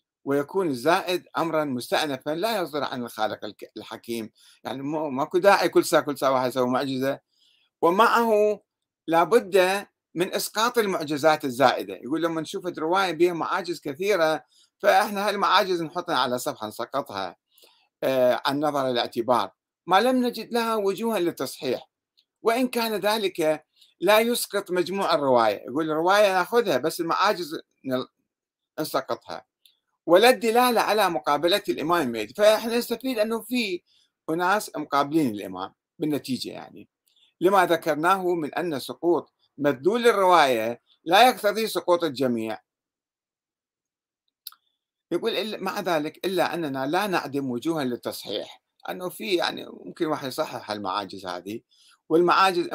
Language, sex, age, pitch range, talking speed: Arabic, male, 60-79, 135-200 Hz, 120 wpm